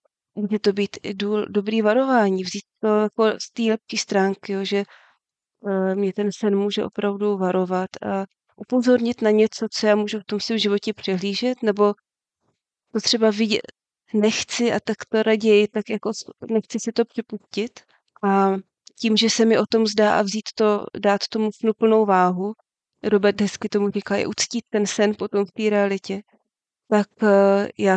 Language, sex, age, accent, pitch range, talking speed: Czech, female, 20-39, native, 200-220 Hz, 165 wpm